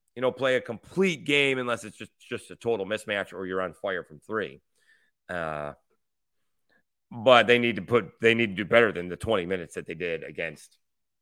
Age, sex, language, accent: 30-49, male, English, American